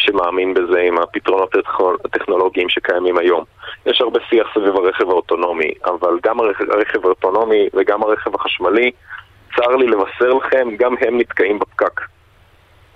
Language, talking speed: Hebrew, 135 wpm